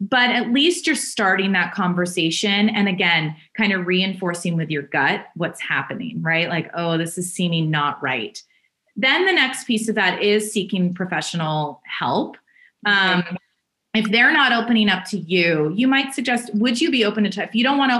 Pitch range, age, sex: 170-215 Hz, 30-49, female